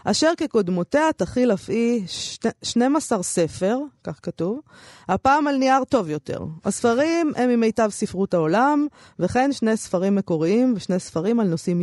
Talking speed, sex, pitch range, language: 135 wpm, female, 180-255 Hz, Hebrew